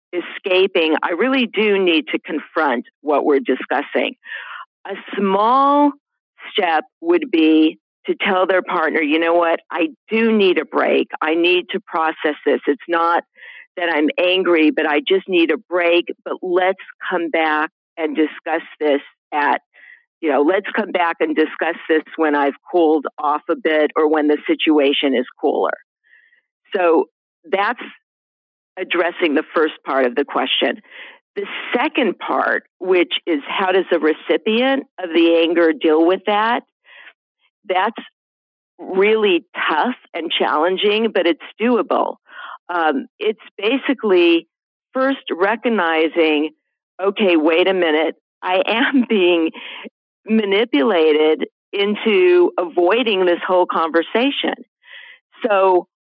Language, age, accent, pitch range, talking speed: English, 50-69, American, 160-225 Hz, 130 wpm